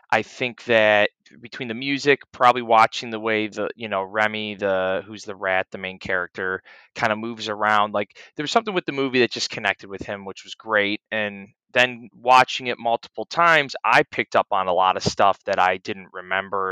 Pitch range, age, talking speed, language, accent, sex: 100-125 Hz, 20-39, 210 wpm, English, American, male